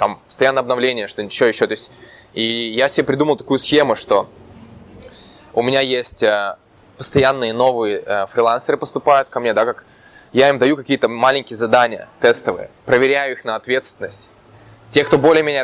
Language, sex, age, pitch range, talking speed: Russian, male, 20-39, 120-140 Hz, 155 wpm